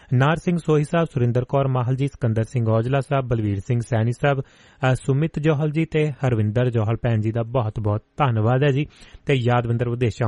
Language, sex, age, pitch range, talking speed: Punjabi, male, 30-49, 120-145 Hz, 170 wpm